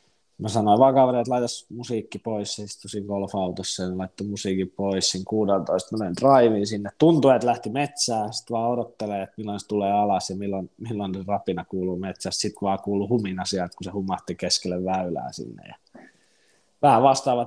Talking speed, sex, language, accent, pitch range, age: 165 wpm, male, Finnish, native, 100-125 Hz, 20-39